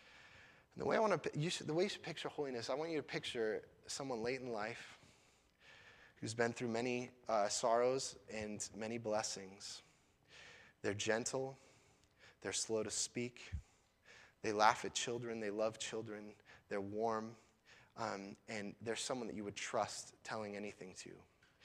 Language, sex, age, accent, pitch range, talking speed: English, male, 20-39, American, 110-135 Hz, 160 wpm